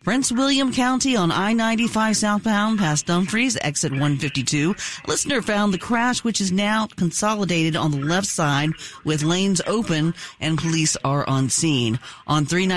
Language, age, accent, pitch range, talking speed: English, 40-59, American, 140-185 Hz, 150 wpm